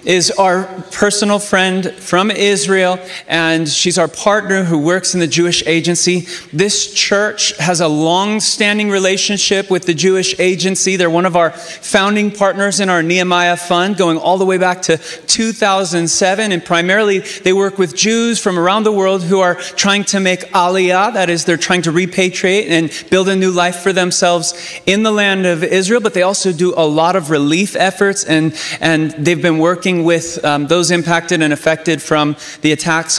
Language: English